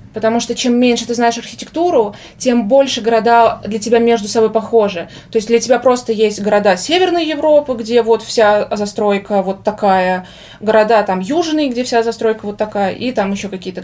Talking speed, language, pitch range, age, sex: 180 wpm, Russian, 195-230 Hz, 20-39, female